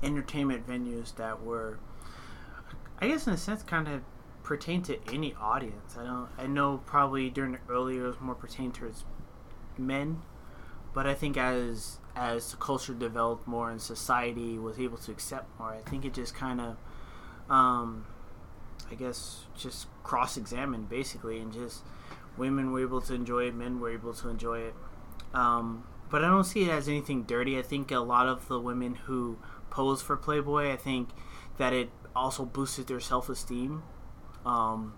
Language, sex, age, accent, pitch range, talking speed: English, male, 30-49, American, 120-135 Hz, 170 wpm